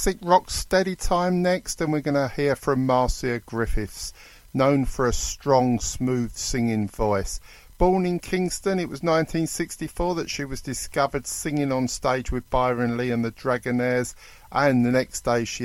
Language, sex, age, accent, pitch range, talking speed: English, male, 50-69, British, 115-140 Hz, 170 wpm